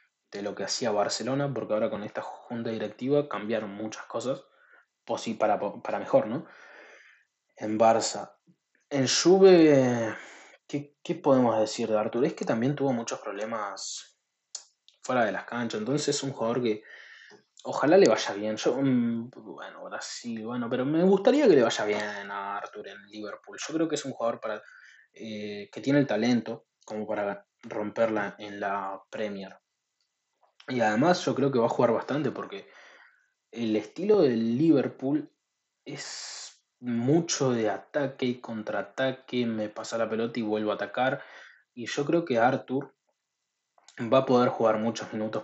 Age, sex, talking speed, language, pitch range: 20-39, male, 160 wpm, Spanish, 110-135 Hz